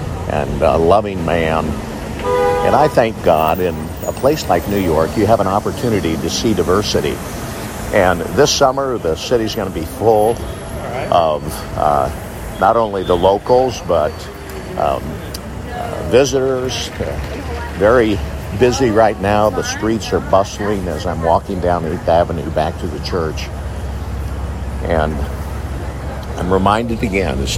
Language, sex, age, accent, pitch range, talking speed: English, male, 60-79, American, 80-105 Hz, 135 wpm